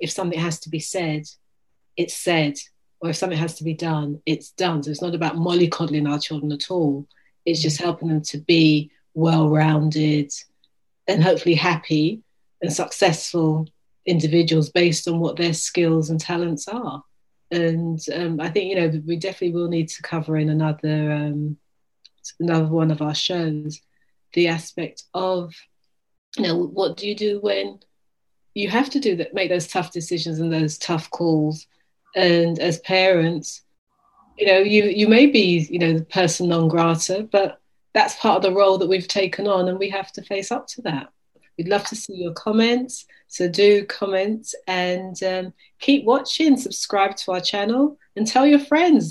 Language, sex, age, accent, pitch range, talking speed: English, female, 30-49, British, 160-205 Hz, 175 wpm